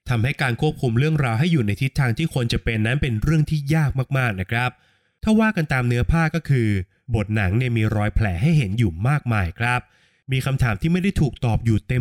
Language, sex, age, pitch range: Thai, male, 20-39, 110-140 Hz